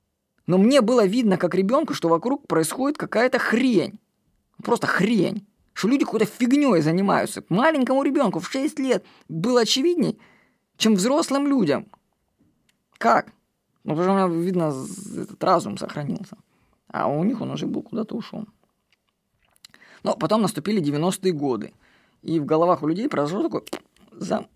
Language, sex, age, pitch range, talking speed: Russian, female, 20-39, 165-240 Hz, 145 wpm